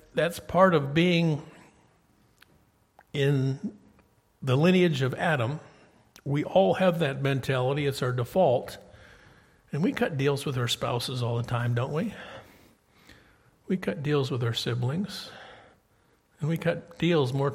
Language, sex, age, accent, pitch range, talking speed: English, male, 50-69, American, 135-185 Hz, 135 wpm